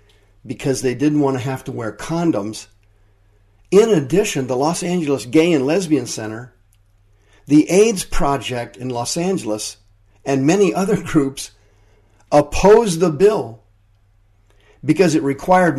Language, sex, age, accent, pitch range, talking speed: English, male, 50-69, American, 100-145 Hz, 130 wpm